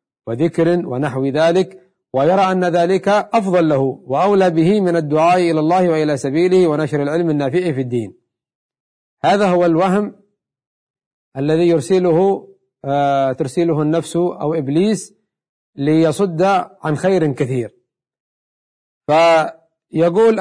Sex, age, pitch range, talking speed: male, 50-69, 155-195 Hz, 105 wpm